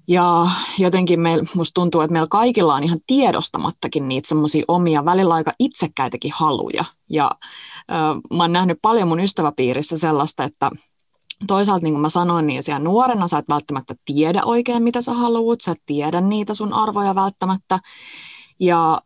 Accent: native